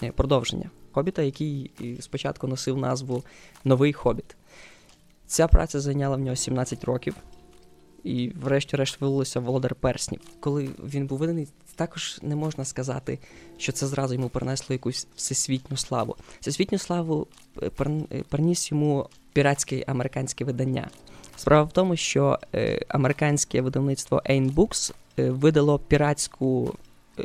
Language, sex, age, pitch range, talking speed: Ukrainian, female, 20-39, 130-150 Hz, 115 wpm